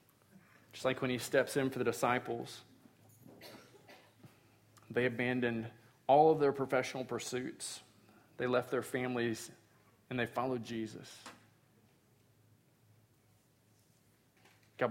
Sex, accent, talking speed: male, American, 100 wpm